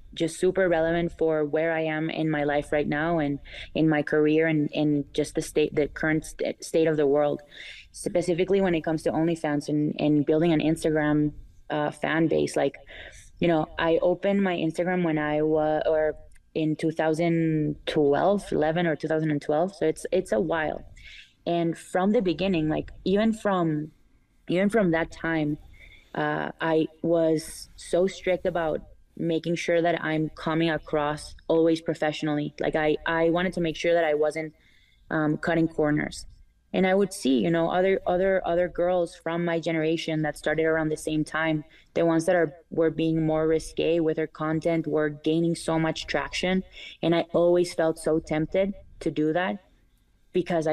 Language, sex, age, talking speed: English, female, 20-39, 170 wpm